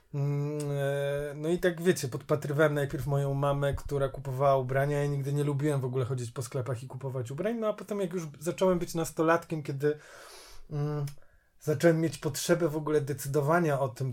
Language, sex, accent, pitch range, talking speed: Polish, male, native, 135-155 Hz, 170 wpm